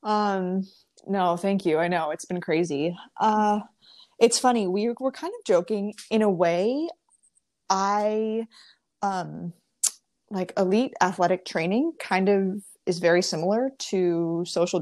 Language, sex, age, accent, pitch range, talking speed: English, female, 20-39, American, 170-210 Hz, 135 wpm